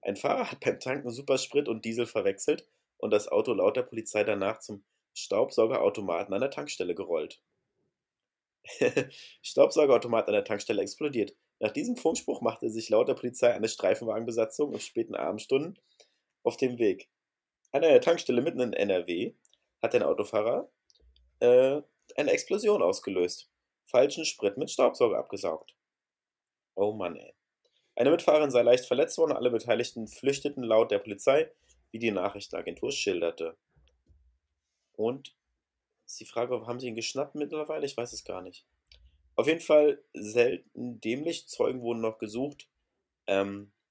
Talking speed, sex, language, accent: 140 wpm, male, German, German